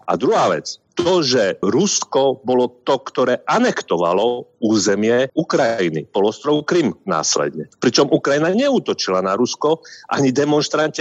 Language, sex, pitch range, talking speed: Slovak, male, 125-175 Hz, 120 wpm